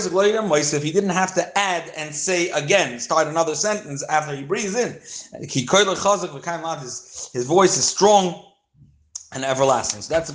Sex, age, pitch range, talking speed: male, 30-49, 145-195 Hz, 145 wpm